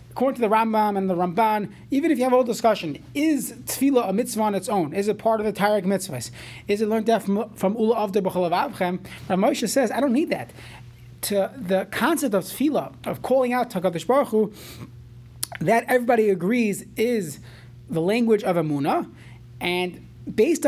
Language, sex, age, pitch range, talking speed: English, male, 30-49, 180-230 Hz, 190 wpm